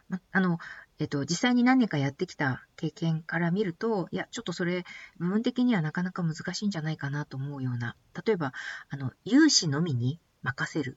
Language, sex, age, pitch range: Japanese, female, 40-59, 140-200 Hz